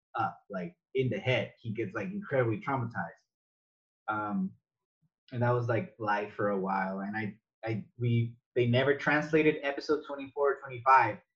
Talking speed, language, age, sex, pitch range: 160 wpm, English, 20-39, male, 115-145 Hz